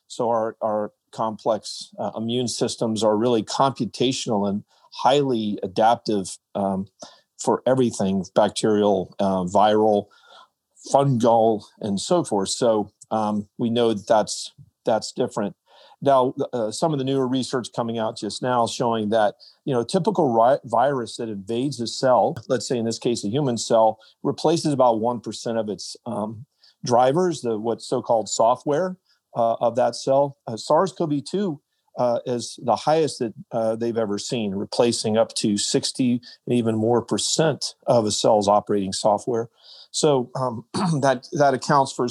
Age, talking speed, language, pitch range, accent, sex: 40-59, 150 wpm, English, 110-135 Hz, American, male